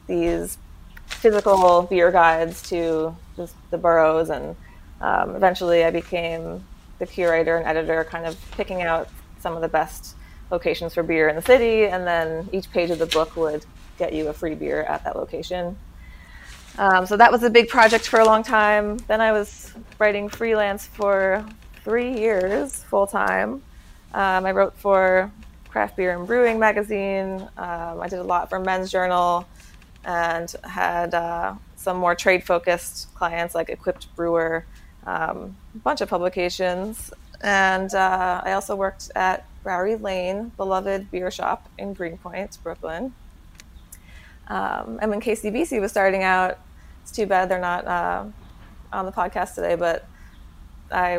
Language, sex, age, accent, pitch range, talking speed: English, female, 20-39, American, 165-200 Hz, 155 wpm